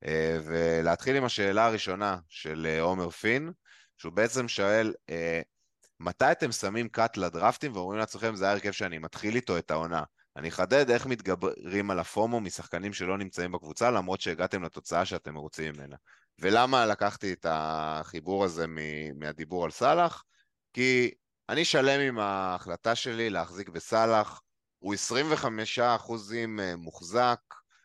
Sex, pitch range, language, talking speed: male, 85-115 Hz, Hebrew, 140 wpm